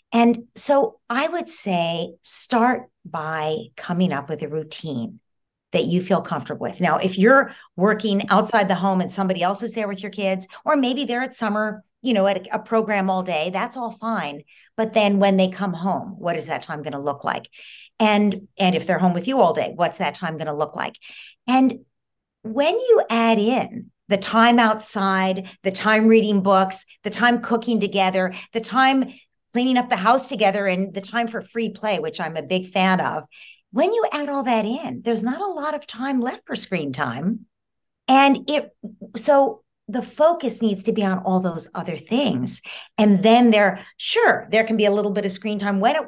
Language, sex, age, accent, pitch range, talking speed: English, female, 50-69, American, 185-235 Hz, 205 wpm